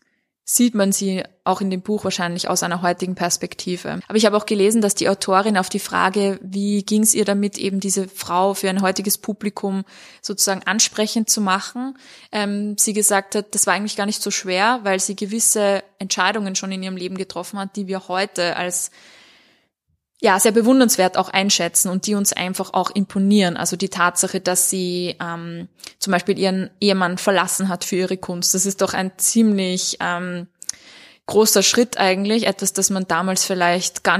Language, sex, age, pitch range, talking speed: German, female, 20-39, 185-205 Hz, 185 wpm